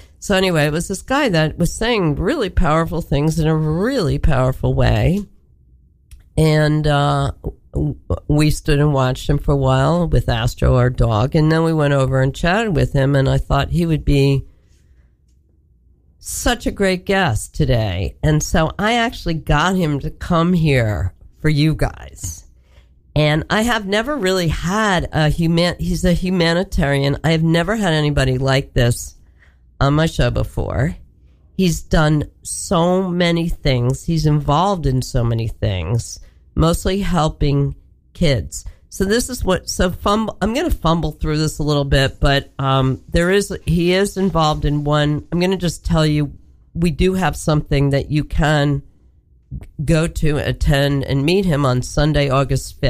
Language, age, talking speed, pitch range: English, 50-69, 165 wpm, 130-170 Hz